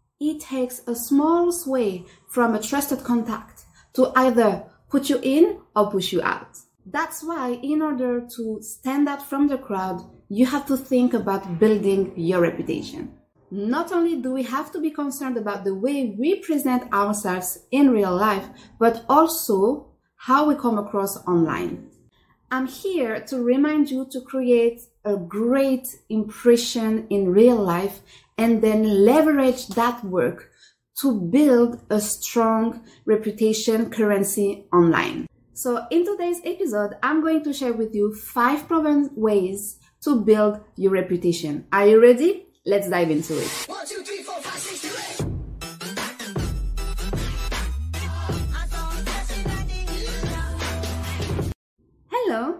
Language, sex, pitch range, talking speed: English, female, 200-280 Hz, 125 wpm